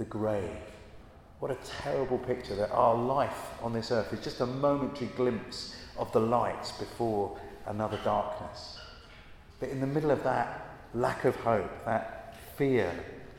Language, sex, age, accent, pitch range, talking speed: English, male, 40-59, British, 105-130 Hz, 150 wpm